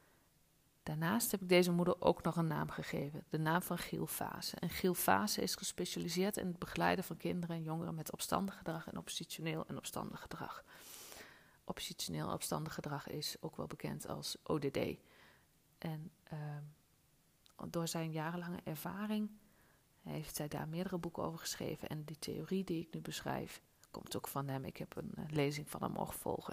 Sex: female